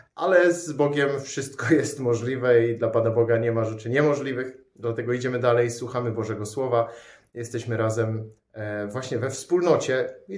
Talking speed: 150 wpm